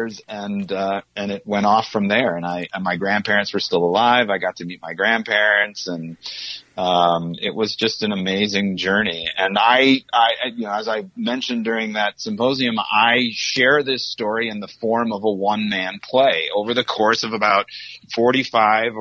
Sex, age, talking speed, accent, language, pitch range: male, 40-59, 185 wpm, American, English, 100-130 Hz